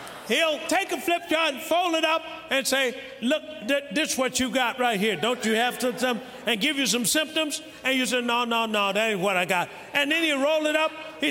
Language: English